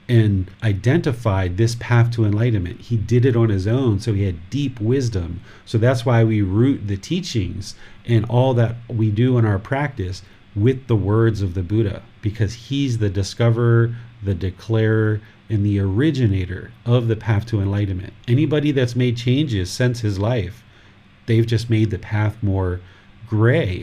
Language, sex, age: English, male, 40-59